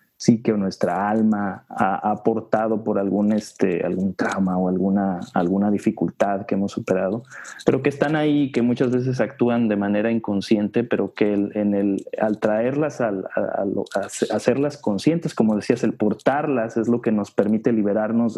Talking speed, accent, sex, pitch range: 165 wpm, Mexican, male, 105-125 Hz